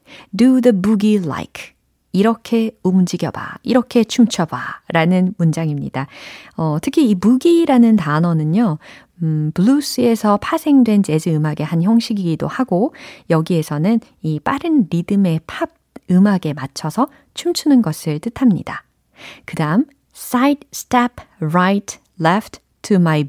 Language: Korean